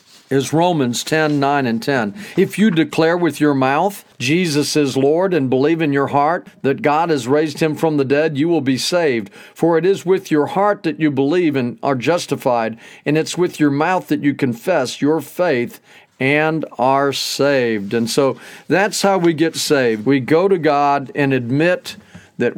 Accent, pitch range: American, 130-165 Hz